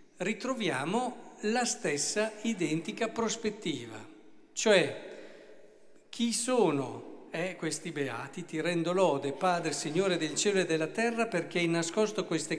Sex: male